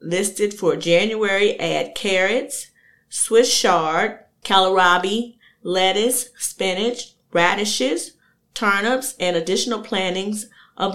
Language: English